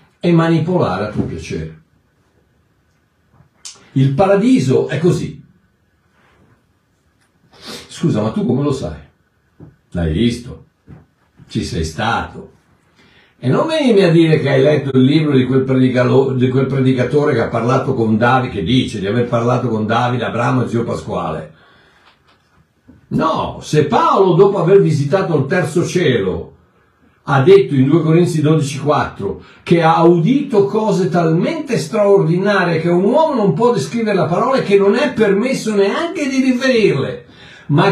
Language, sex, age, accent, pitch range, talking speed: Italian, male, 60-79, native, 130-200 Hz, 140 wpm